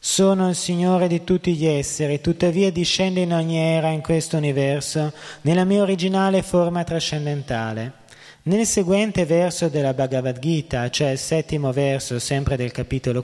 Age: 20-39